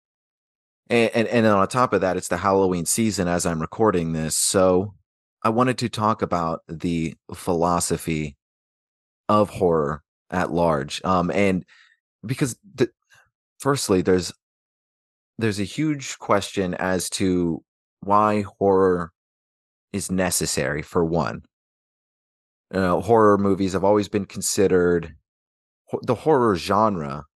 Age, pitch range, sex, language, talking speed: 30-49, 85-105 Hz, male, English, 125 wpm